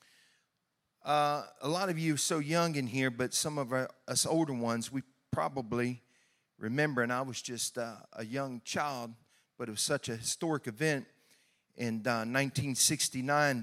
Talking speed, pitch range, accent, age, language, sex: 165 wpm, 125-160 Hz, American, 40-59, English, male